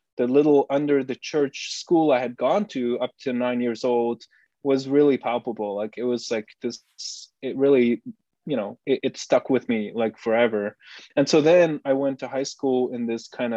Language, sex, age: English, male, 20-39